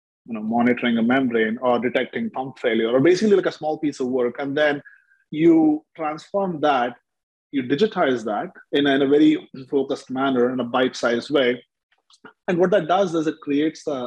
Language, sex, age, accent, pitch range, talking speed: English, male, 30-49, Indian, 120-155 Hz, 185 wpm